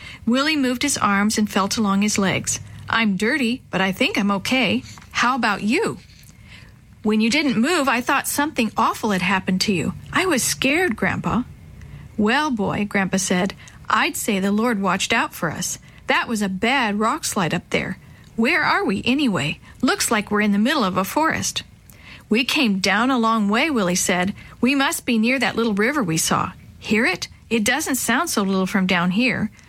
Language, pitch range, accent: English, 195-255 Hz, American